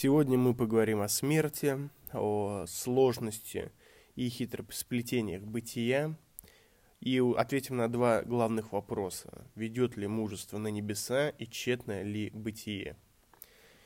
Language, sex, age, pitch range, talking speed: Russian, male, 20-39, 110-145 Hz, 110 wpm